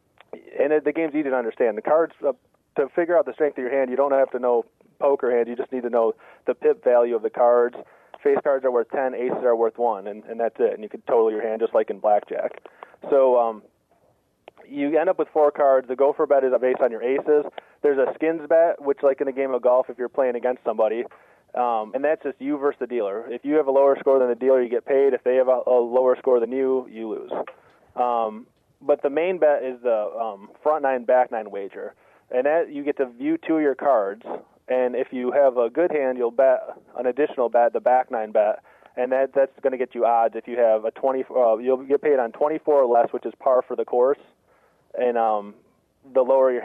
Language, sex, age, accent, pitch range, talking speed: English, male, 30-49, American, 120-150 Hz, 245 wpm